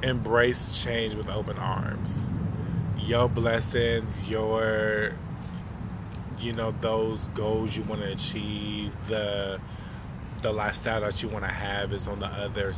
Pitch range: 100-115 Hz